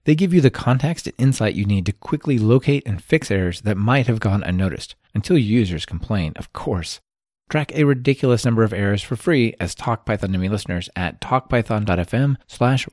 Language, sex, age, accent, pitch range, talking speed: English, male, 30-49, American, 95-130 Hz, 190 wpm